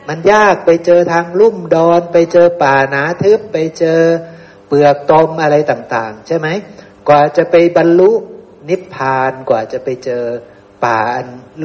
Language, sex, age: Thai, male, 60-79